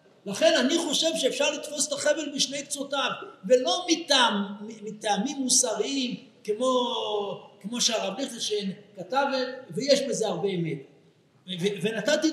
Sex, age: male, 60-79